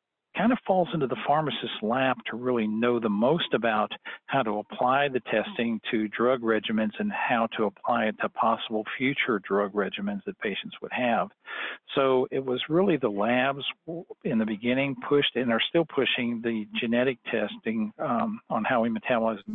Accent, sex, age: American, male, 50-69